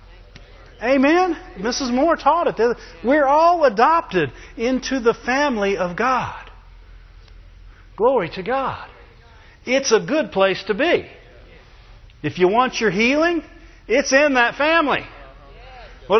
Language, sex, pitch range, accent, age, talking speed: English, male, 160-235 Hz, American, 40-59, 120 wpm